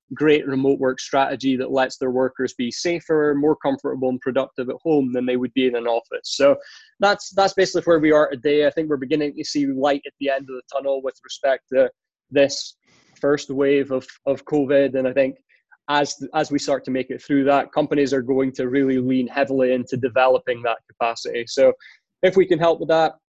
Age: 20-39